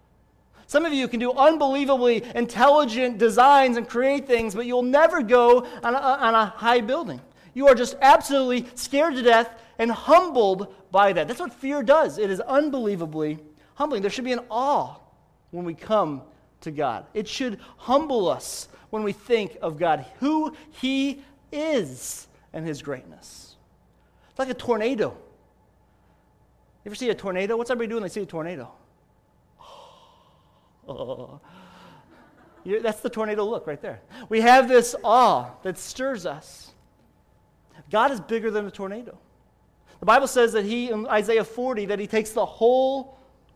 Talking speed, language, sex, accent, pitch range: 155 wpm, English, male, American, 215-265 Hz